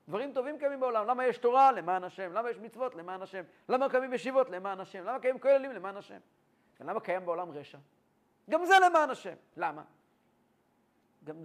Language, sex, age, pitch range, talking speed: English, male, 40-59, 165-280 Hz, 110 wpm